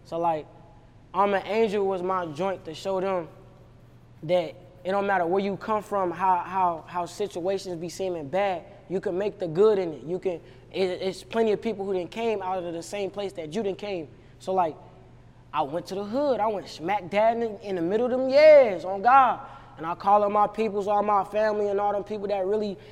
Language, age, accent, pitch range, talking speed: English, 20-39, American, 180-225 Hz, 225 wpm